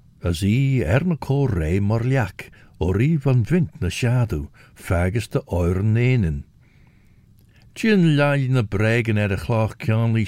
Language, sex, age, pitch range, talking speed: English, male, 60-79, 95-135 Hz, 145 wpm